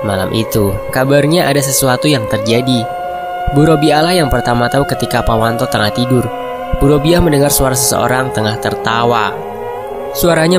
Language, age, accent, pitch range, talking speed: Indonesian, 20-39, native, 115-170 Hz, 130 wpm